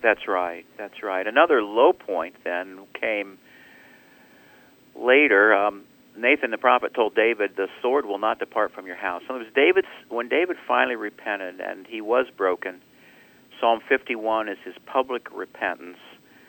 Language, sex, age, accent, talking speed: English, male, 50-69, American, 155 wpm